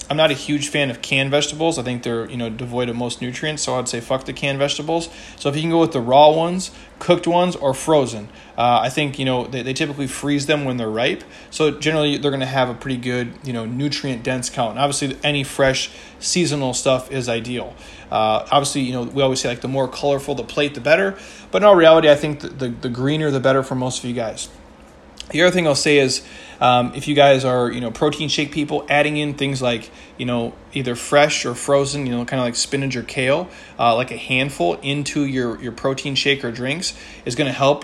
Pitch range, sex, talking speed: 125-150 Hz, male, 240 wpm